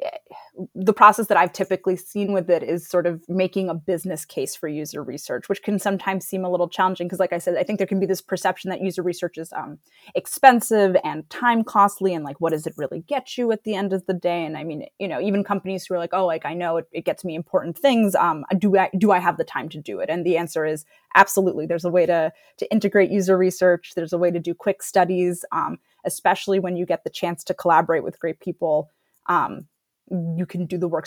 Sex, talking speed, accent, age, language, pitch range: female, 245 wpm, American, 20-39, English, 170-195 Hz